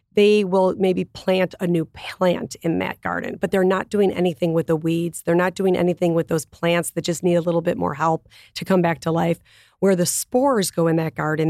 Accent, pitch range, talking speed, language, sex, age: American, 165-185 Hz, 235 wpm, English, female, 40-59